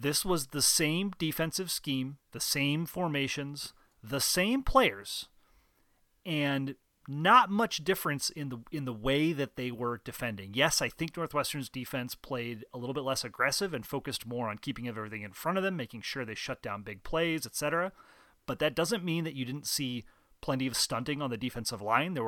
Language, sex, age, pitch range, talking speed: English, male, 30-49, 120-155 Hz, 190 wpm